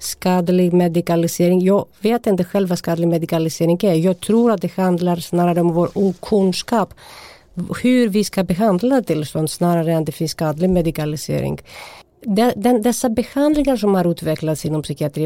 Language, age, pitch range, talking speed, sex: Swedish, 50-69, 160-200 Hz, 155 wpm, female